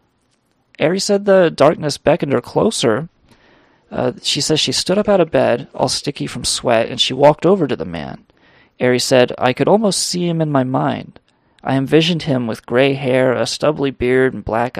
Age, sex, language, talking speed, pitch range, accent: 30-49, male, English, 195 wpm, 125-165 Hz, American